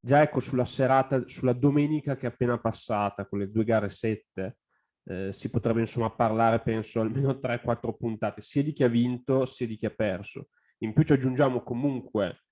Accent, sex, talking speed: native, male, 185 wpm